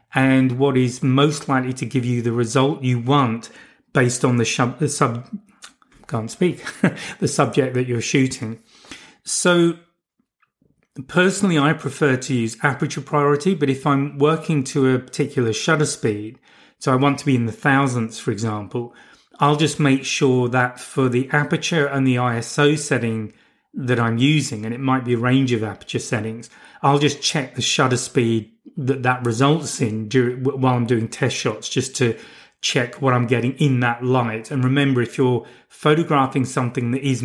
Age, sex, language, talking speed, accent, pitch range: 30-49, male, English, 170 wpm, British, 120-140 Hz